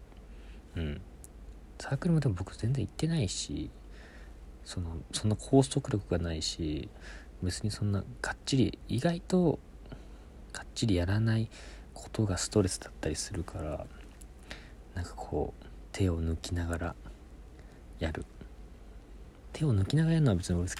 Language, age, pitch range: Japanese, 40-59, 70-105 Hz